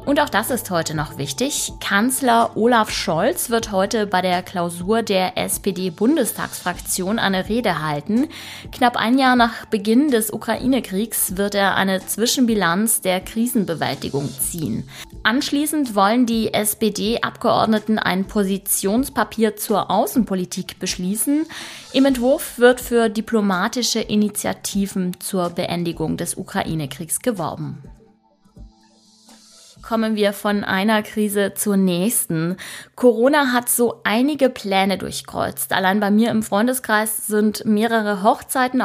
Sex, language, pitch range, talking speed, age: female, German, 190-230 Hz, 115 wpm, 20-39